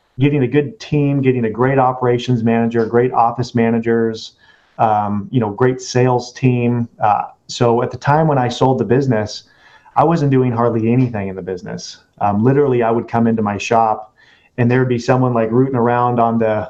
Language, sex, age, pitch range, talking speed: English, male, 30-49, 110-130 Hz, 195 wpm